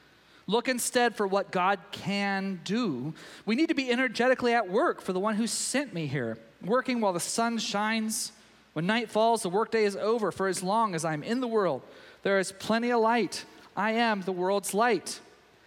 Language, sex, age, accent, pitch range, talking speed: English, male, 40-59, American, 190-245 Hz, 195 wpm